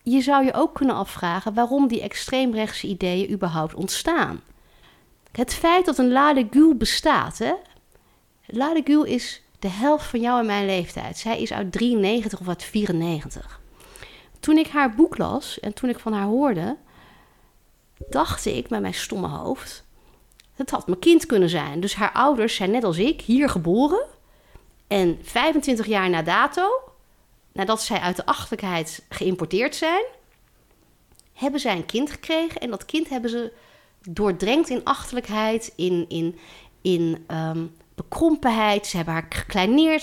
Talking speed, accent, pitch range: 150 wpm, Dutch, 195-300 Hz